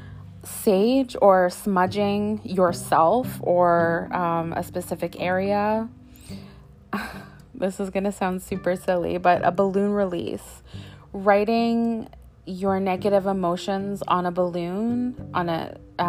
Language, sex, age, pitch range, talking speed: English, female, 20-39, 175-205 Hz, 105 wpm